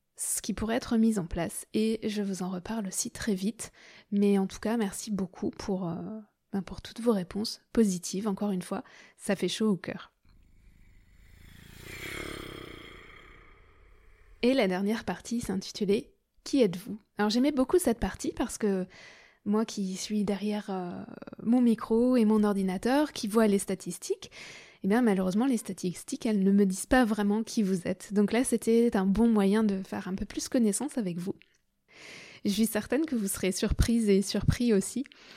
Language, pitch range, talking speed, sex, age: French, 190-230 Hz, 175 wpm, female, 20-39